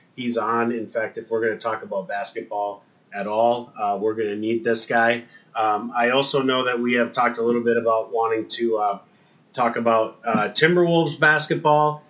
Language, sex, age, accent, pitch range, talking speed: English, male, 30-49, American, 110-140 Hz, 200 wpm